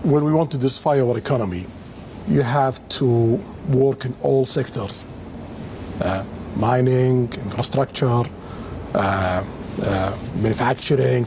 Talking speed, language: 105 wpm, English